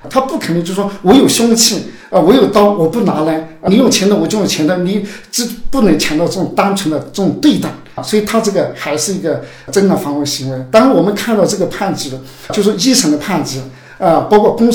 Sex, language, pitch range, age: male, Chinese, 160-225 Hz, 50-69